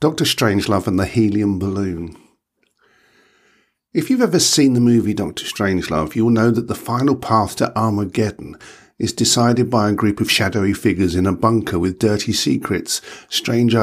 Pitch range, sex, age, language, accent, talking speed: 100-120 Hz, male, 50-69, English, British, 160 wpm